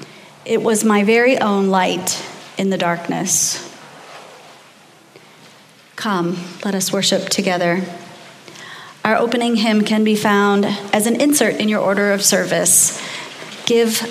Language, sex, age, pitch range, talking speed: English, female, 30-49, 200-270 Hz, 125 wpm